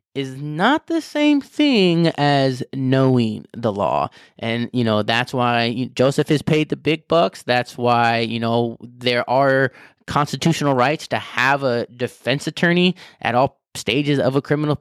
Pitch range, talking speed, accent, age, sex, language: 120-150 Hz, 160 wpm, American, 20-39, male, English